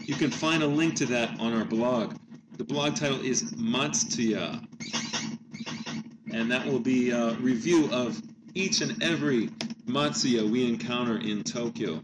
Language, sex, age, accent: English, male, 40-59, American